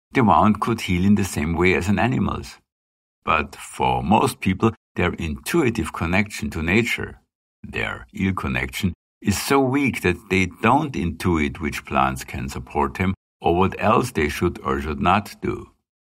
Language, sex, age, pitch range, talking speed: English, male, 60-79, 70-105 Hz, 165 wpm